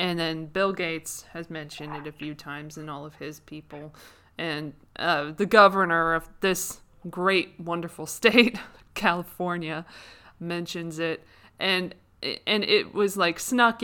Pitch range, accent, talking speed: 155-185 Hz, American, 145 wpm